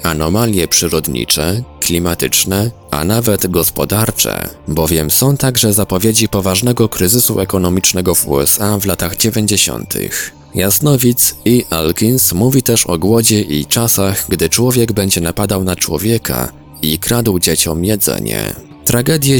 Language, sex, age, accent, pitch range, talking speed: Polish, male, 20-39, native, 85-115 Hz, 120 wpm